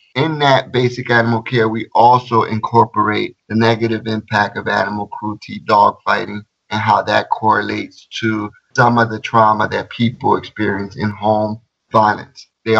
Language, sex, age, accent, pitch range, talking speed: English, male, 30-49, American, 110-125 Hz, 150 wpm